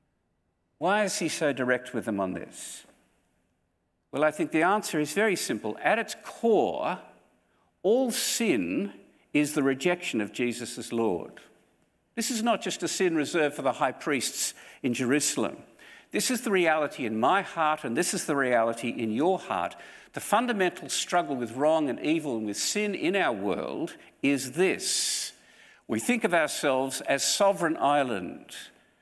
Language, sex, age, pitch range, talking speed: English, male, 50-69, 115-180 Hz, 165 wpm